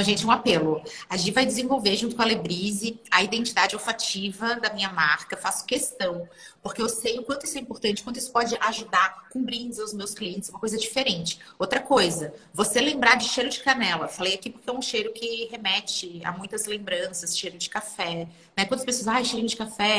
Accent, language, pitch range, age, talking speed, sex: Brazilian, Portuguese, 195-260 Hz, 30-49, 210 wpm, female